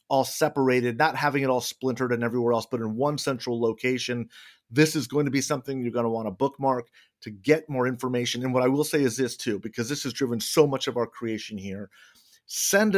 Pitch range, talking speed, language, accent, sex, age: 115-140 Hz, 230 wpm, English, American, male, 40-59